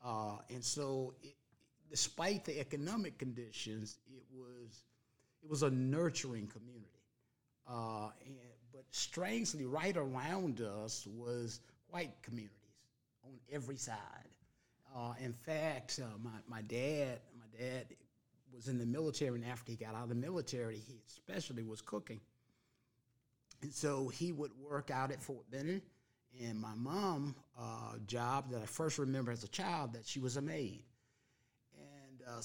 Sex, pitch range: male, 120-145 Hz